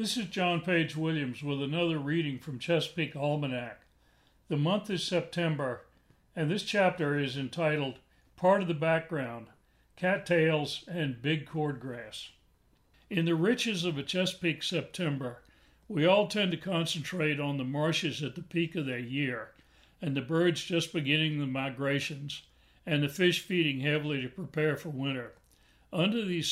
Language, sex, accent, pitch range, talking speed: English, male, American, 140-170 Hz, 155 wpm